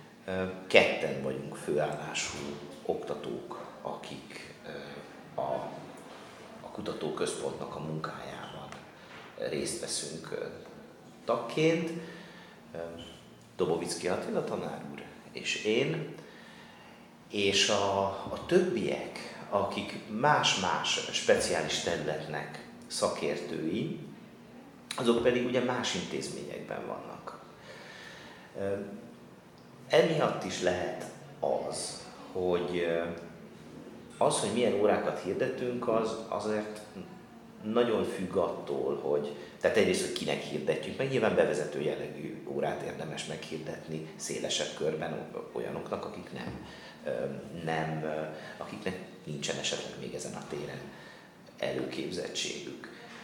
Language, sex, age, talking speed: Hungarian, male, 50-69, 85 wpm